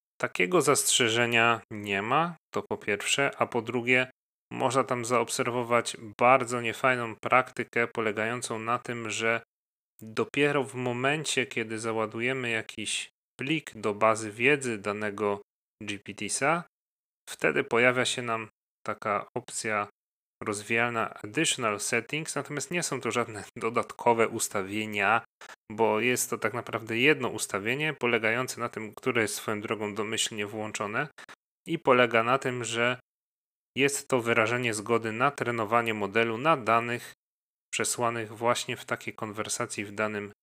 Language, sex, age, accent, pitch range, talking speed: Polish, male, 30-49, native, 110-125 Hz, 125 wpm